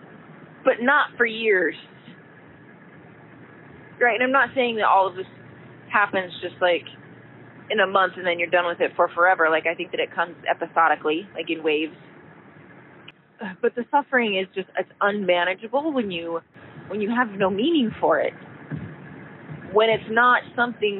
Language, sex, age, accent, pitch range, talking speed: English, female, 30-49, American, 165-205 Hz, 165 wpm